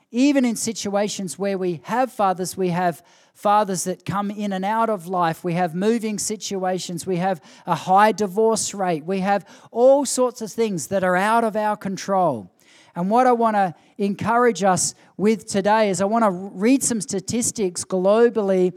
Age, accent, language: 40-59, Australian, English